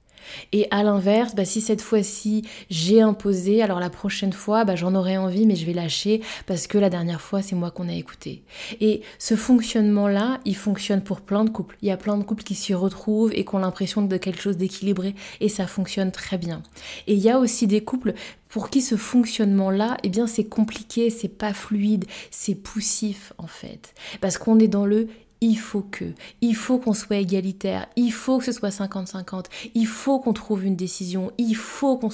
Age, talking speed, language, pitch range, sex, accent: 20-39, 210 wpm, French, 195-225 Hz, female, French